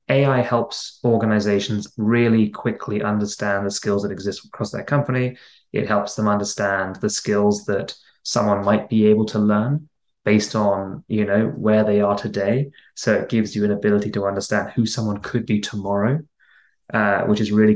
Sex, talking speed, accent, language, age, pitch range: male, 165 wpm, British, English, 20-39, 100-115 Hz